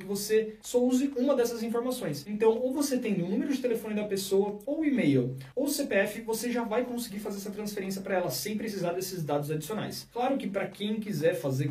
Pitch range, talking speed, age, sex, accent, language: 160-210 Hz, 210 wpm, 20-39, male, Brazilian, Portuguese